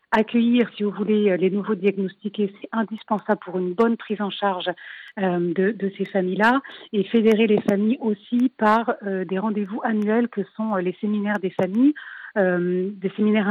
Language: French